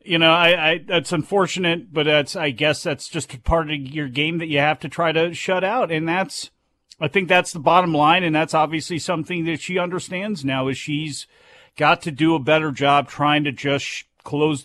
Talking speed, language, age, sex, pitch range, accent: 215 wpm, English, 40-59, male, 135-175 Hz, American